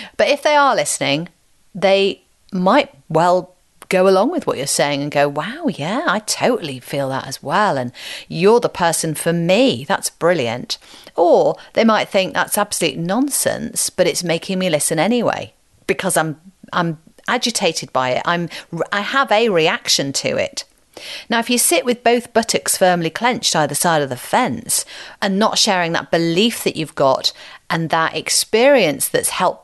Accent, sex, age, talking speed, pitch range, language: British, female, 40-59, 170 wpm, 155-225 Hz, English